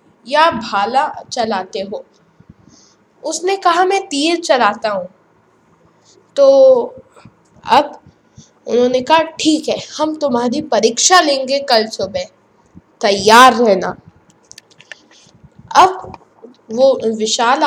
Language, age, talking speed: English, 20-39, 90 wpm